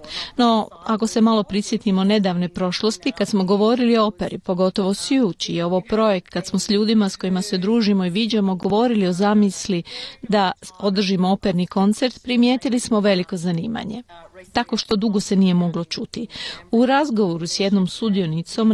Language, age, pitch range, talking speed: Croatian, 40-59, 180-220 Hz, 165 wpm